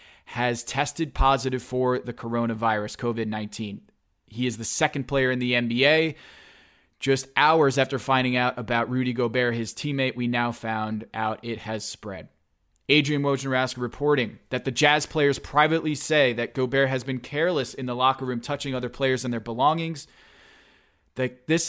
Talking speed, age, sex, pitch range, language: 160 wpm, 20-39, male, 115-140 Hz, English